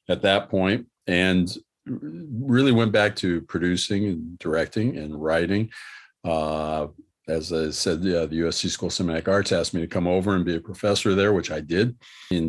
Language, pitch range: English, 85-100 Hz